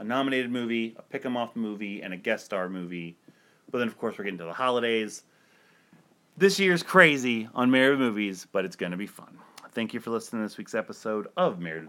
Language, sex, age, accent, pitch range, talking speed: English, male, 30-49, American, 95-140 Hz, 210 wpm